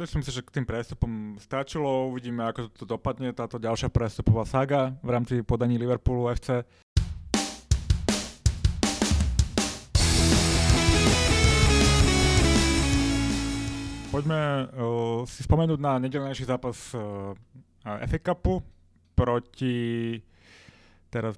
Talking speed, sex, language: 95 wpm, male, Slovak